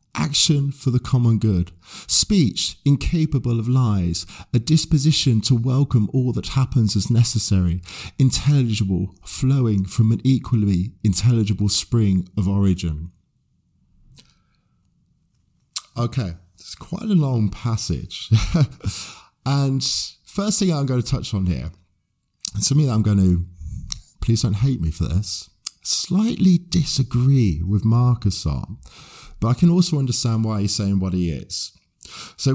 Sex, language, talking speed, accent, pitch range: male, English, 130 wpm, British, 90-125 Hz